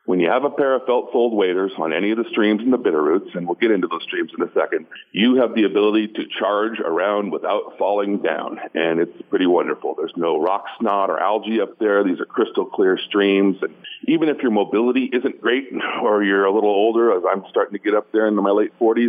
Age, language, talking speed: 50-69, English, 230 wpm